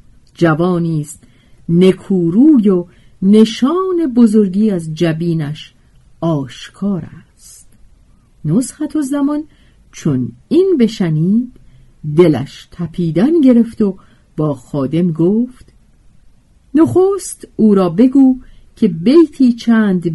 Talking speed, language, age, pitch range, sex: 85 wpm, Persian, 50-69, 155-255 Hz, female